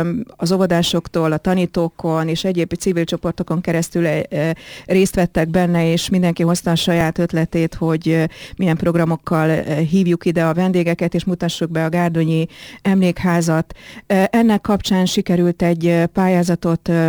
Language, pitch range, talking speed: Hungarian, 170-190 Hz, 125 wpm